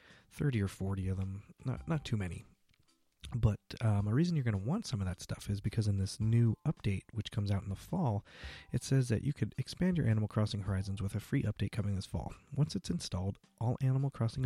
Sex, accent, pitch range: male, American, 100-120 Hz